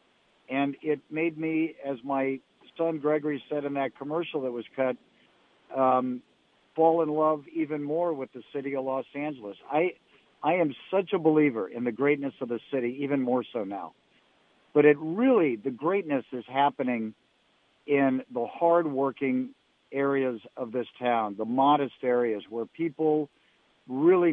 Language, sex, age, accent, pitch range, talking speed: English, male, 50-69, American, 130-155 Hz, 155 wpm